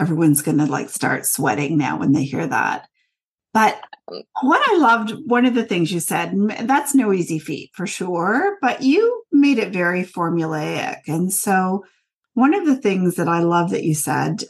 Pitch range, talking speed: 170-230 Hz, 185 wpm